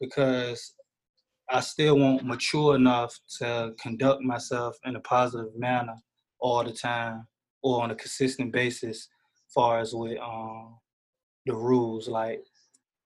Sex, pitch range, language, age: male, 120-135 Hz, English, 20-39